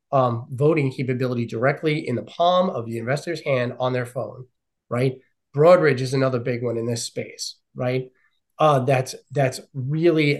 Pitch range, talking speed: 130-165 Hz, 160 wpm